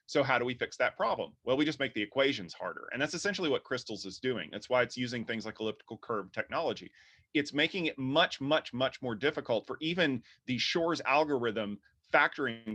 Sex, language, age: male, English, 30-49